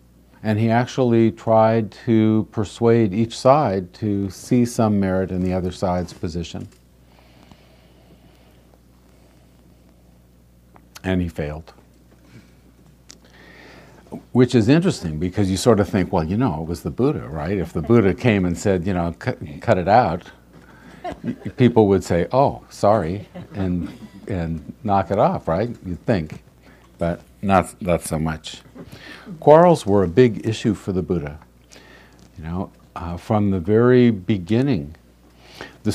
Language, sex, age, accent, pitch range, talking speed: English, male, 50-69, American, 75-105 Hz, 135 wpm